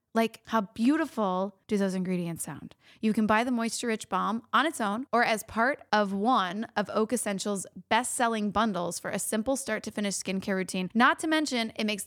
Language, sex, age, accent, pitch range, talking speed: English, female, 20-39, American, 190-245 Hz, 190 wpm